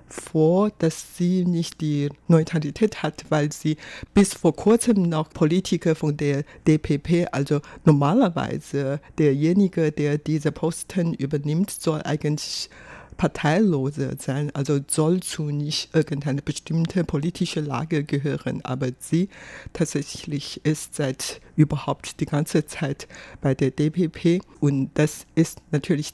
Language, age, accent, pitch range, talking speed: German, 60-79, German, 145-170 Hz, 120 wpm